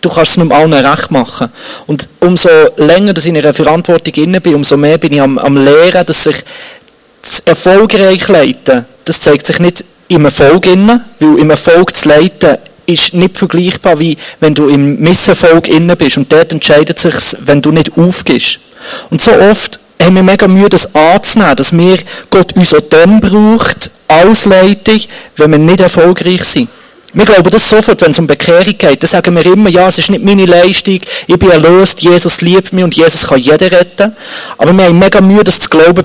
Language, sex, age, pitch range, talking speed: German, male, 40-59, 155-195 Hz, 195 wpm